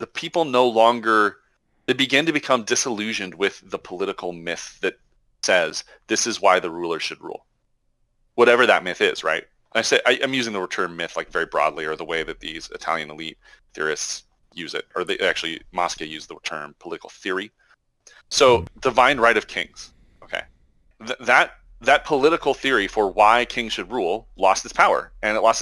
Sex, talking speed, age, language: male, 180 wpm, 30-49, English